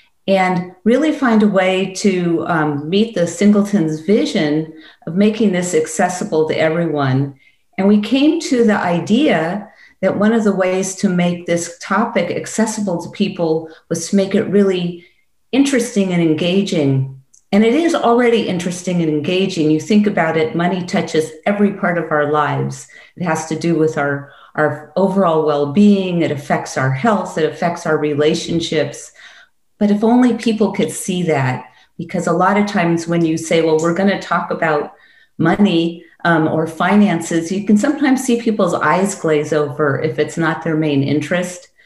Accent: American